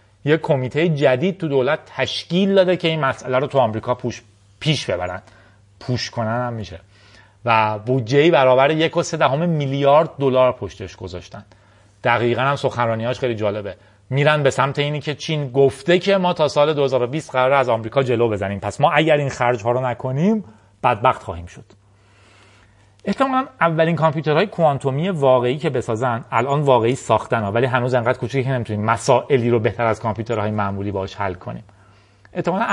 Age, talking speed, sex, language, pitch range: 30-49, 165 wpm, male, Persian, 105-145 Hz